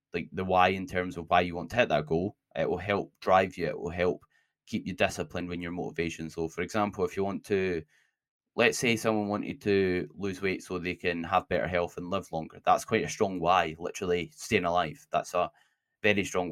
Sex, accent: male, British